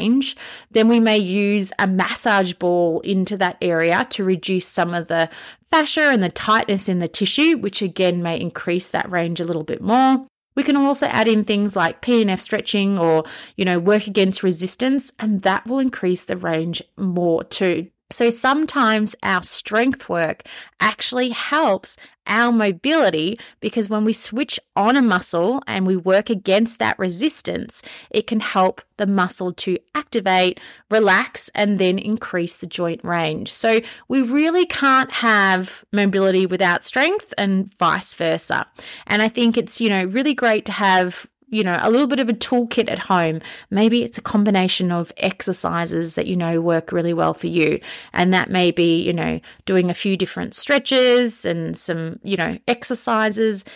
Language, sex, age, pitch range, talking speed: English, female, 30-49, 180-230 Hz, 170 wpm